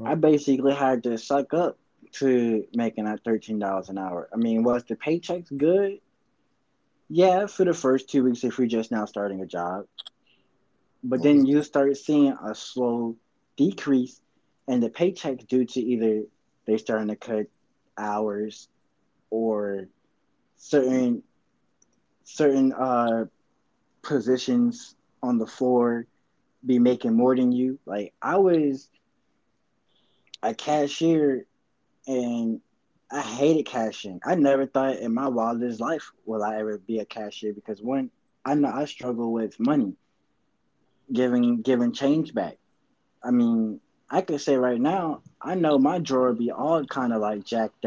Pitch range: 110-140 Hz